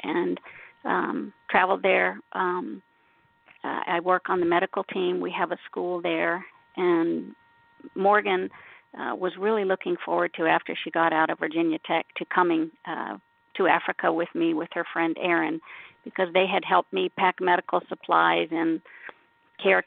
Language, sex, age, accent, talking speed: English, female, 50-69, American, 155 wpm